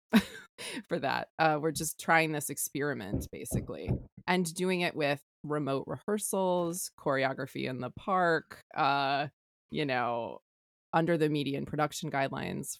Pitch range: 140-165 Hz